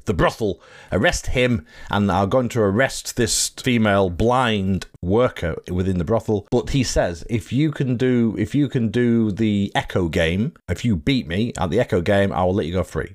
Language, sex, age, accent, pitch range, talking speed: English, male, 40-59, British, 95-120 Hz, 200 wpm